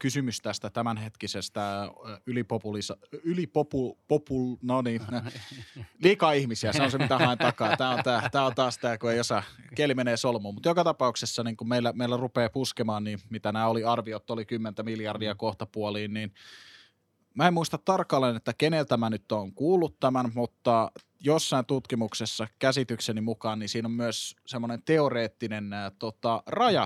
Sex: male